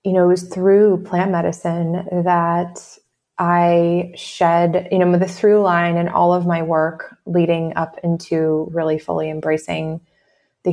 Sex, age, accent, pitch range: female, 20-39, American, 165-175 Hz